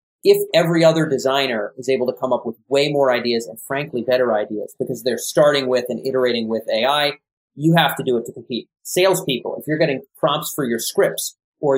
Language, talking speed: English, 210 wpm